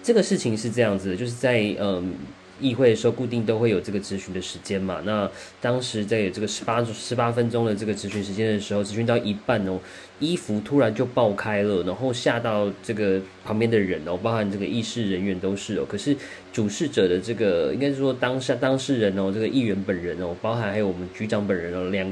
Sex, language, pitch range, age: male, Chinese, 100-120 Hz, 20-39